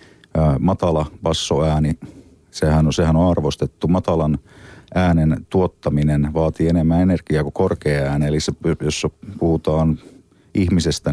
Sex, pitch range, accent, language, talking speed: male, 75-85 Hz, native, Finnish, 115 wpm